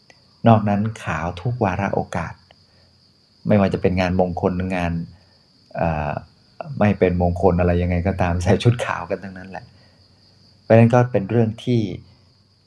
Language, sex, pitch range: Thai, male, 95-110 Hz